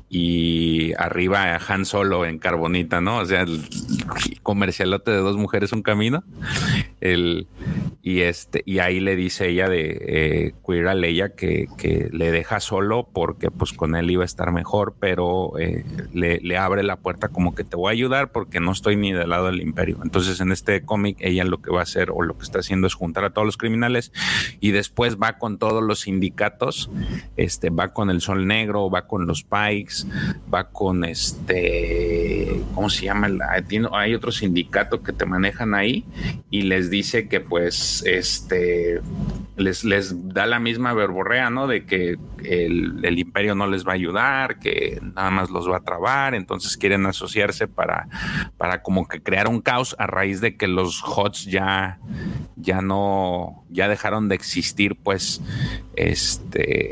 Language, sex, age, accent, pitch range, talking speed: Spanish, male, 30-49, Mexican, 90-105 Hz, 175 wpm